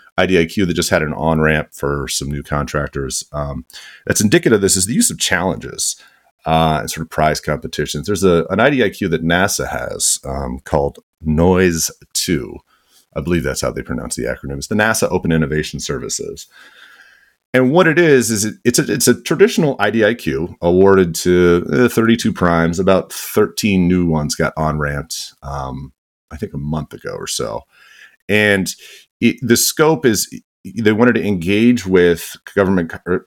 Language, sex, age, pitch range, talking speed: English, male, 30-49, 75-100 Hz, 165 wpm